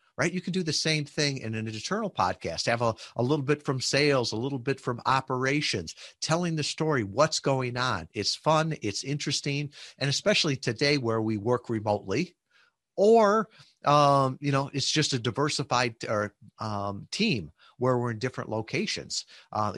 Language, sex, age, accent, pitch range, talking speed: English, male, 50-69, American, 110-150 Hz, 175 wpm